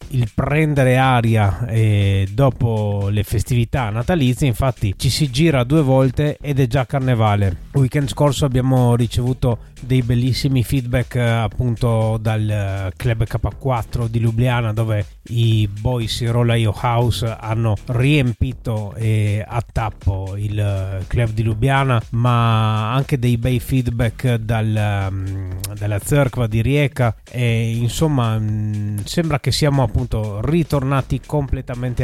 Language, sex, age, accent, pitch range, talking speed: Italian, male, 30-49, native, 110-135 Hz, 120 wpm